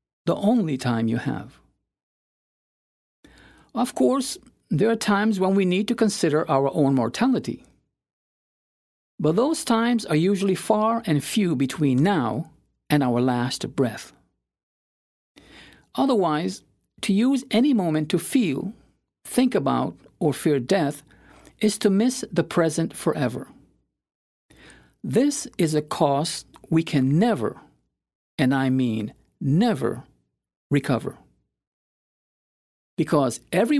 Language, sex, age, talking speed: English, male, 50-69, 115 wpm